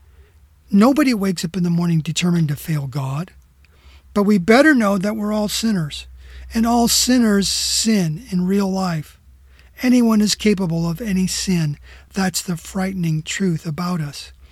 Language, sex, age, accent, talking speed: English, male, 40-59, American, 155 wpm